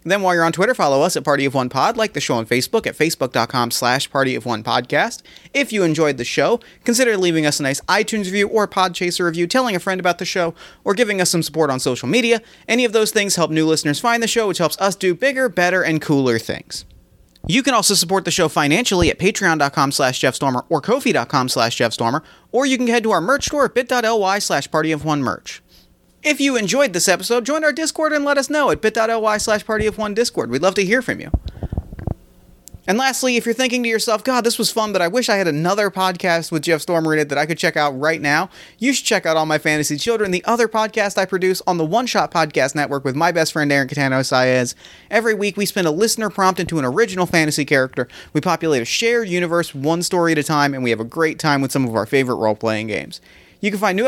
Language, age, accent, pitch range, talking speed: English, 30-49, American, 150-220 Hz, 235 wpm